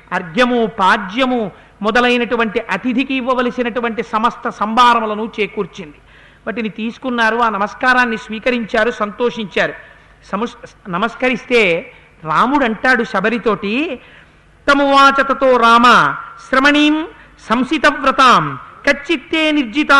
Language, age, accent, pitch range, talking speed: Telugu, 50-69, native, 225-275 Hz, 80 wpm